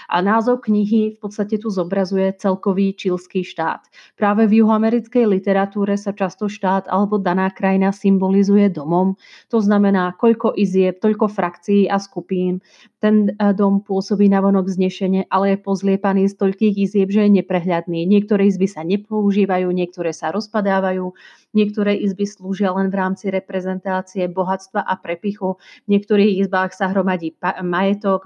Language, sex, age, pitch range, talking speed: Slovak, female, 30-49, 185-205 Hz, 145 wpm